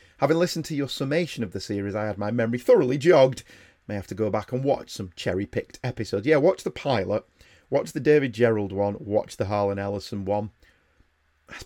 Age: 30-49